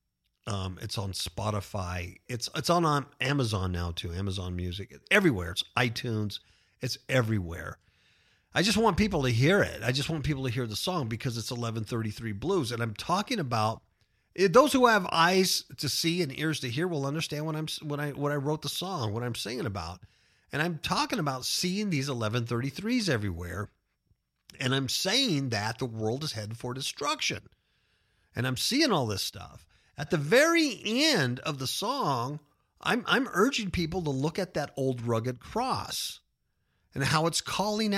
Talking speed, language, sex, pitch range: 180 wpm, English, male, 110-175 Hz